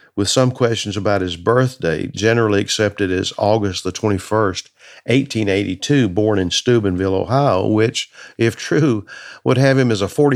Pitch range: 95-120 Hz